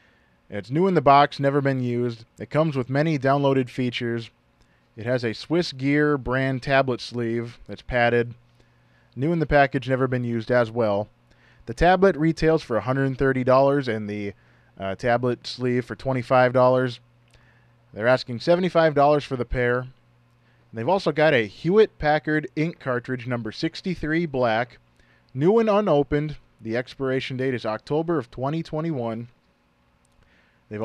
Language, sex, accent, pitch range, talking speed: English, male, American, 115-150 Hz, 140 wpm